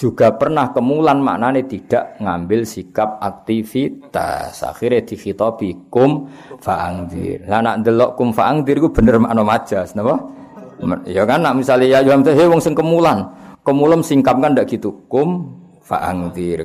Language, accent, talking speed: Indonesian, native, 145 wpm